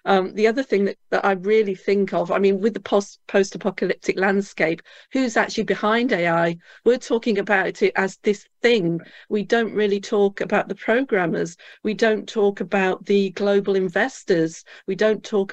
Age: 40-59